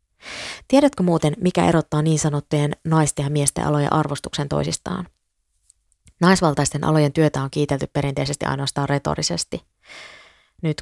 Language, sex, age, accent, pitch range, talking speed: Finnish, female, 20-39, native, 145-170 Hz, 115 wpm